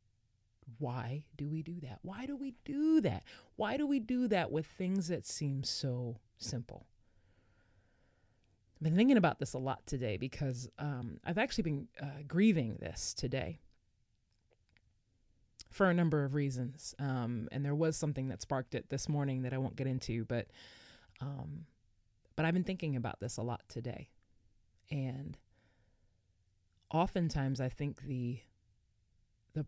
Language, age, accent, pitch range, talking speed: English, 20-39, American, 110-155 Hz, 150 wpm